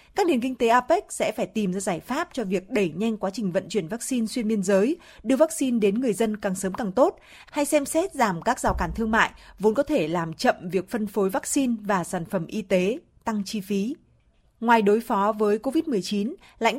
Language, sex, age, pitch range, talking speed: Vietnamese, female, 20-39, 195-250 Hz, 230 wpm